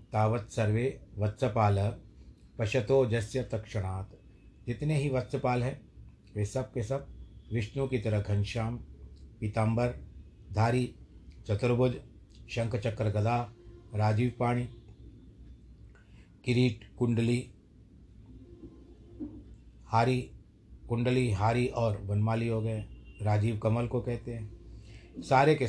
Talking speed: 95 wpm